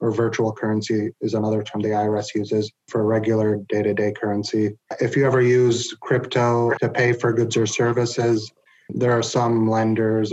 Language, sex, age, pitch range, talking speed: English, male, 20-39, 110-120 Hz, 165 wpm